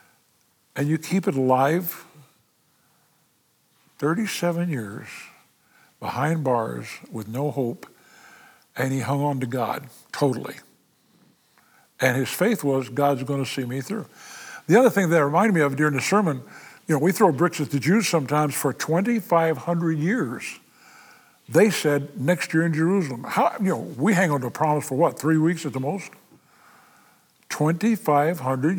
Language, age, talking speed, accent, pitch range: English, 60-79, 150 wpm, American, 135-170 Hz